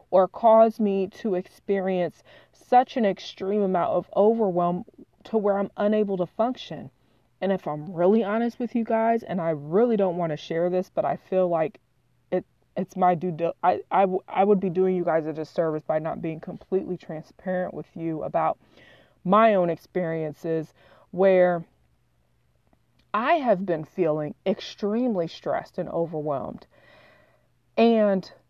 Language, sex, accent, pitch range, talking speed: English, female, American, 165-205 Hz, 150 wpm